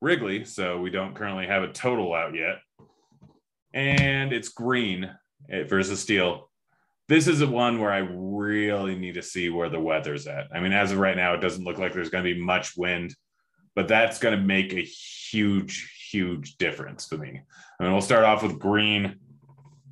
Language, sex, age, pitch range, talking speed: English, male, 30-49, 90-115 Hz, 185 wpm